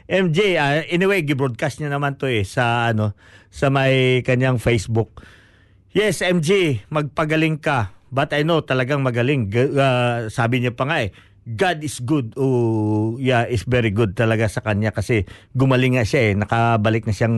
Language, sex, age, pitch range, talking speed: Filipino, male, 50-69, 115-165 Hz, 175 wpm